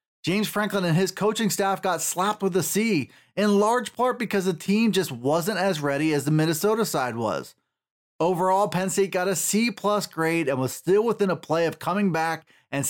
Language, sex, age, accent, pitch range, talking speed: English, male, 30-49, American, 155-205 Hz, 200 wpm